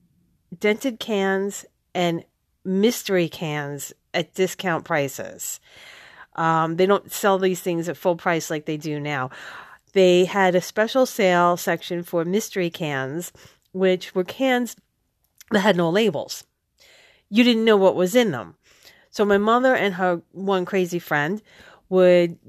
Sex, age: female, 40-59